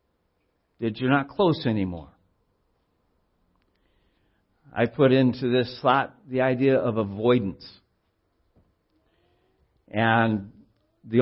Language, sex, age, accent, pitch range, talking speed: English, male, 60-79, American, 105-145 Hz, 85 wpm